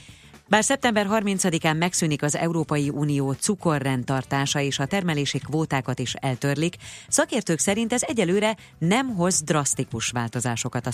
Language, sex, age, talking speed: Hungarian, female, 30-49, 125 wpm